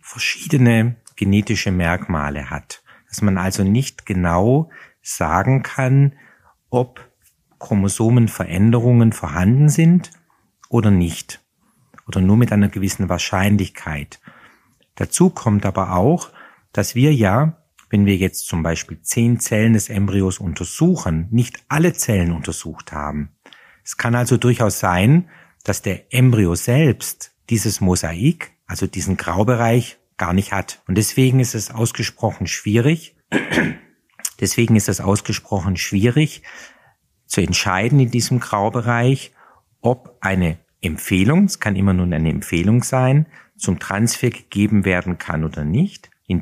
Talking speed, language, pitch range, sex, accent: 125 wpm, German, 95-125 Hz, male, German